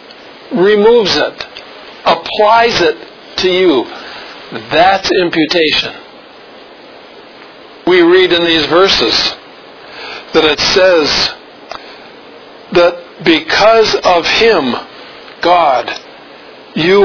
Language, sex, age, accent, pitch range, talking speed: English, male, 50-69, American, 165-245 Hz, 75 wpm